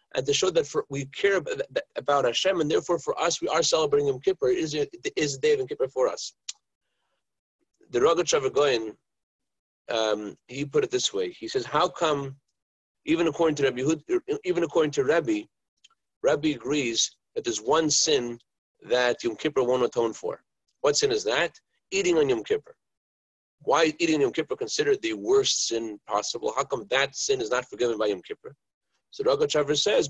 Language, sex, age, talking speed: English, male, 40-59, 185 wpm